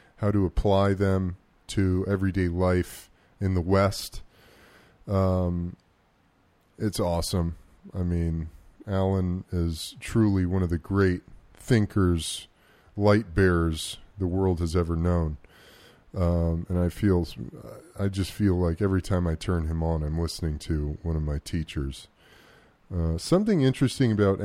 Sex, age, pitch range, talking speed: male, 30-49, 90-110 Hz, 135 wpm